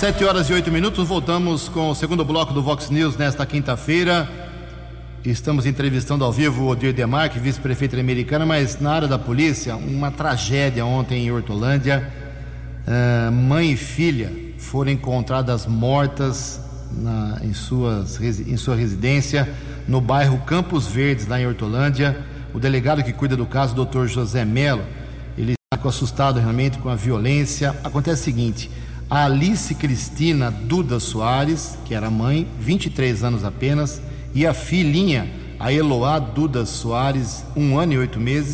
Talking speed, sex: 150 wpm, male